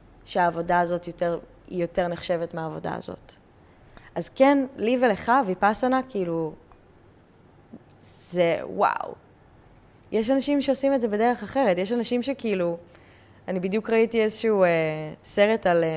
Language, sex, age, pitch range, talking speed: Hebrew, female, 20-39, 175-245 Hz, 130 wpm